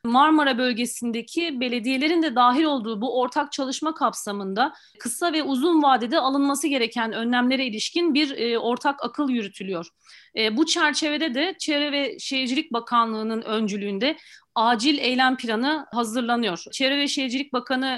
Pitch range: 235-280 Hz